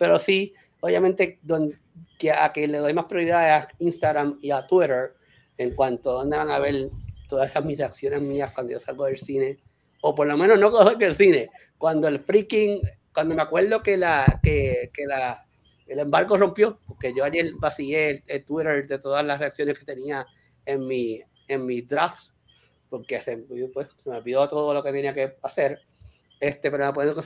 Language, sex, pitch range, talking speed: English, male, 135-170 Hz, 200 wpm